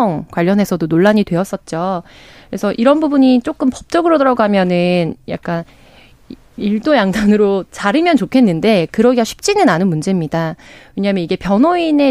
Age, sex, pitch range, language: 20-39, female, 185-260 Hz, Korean